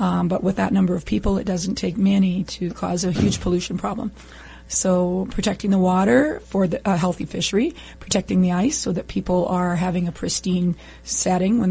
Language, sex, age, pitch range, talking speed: English, female, 30-49, 180-205 Hz, 190 wpm